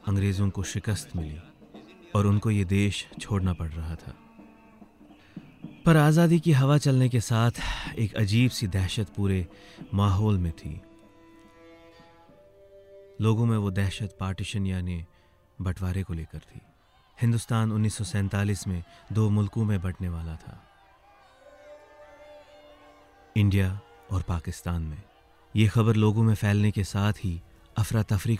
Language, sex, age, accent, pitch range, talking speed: Hindi, male, 30-49, native, 90-110 Hz, 125 wpm